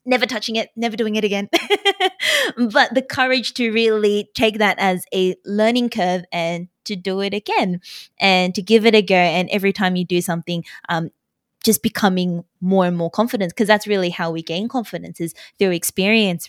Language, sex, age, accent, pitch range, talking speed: English, female, 20-39, Australian, 185-230 Hz, 190 wpm